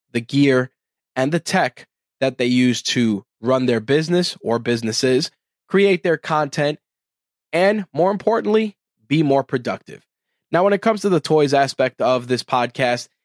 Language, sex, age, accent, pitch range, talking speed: English, male, 20-39, American, 120-170 Hz, 155 wpm